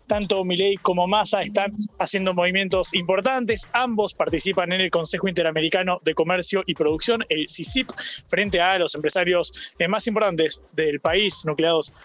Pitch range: 160-200 Hz